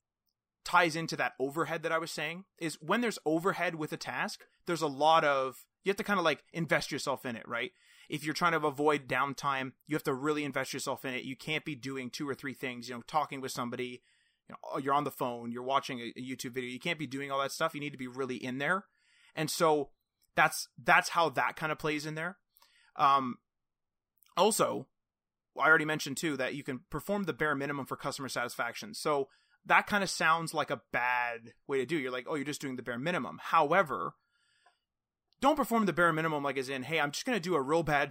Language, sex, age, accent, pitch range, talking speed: English, male, 30-49, American, 130-165 Hz, 235 wpm